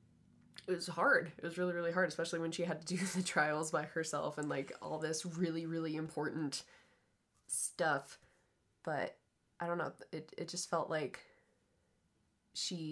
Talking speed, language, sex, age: 165 wpm, English, female, 20-39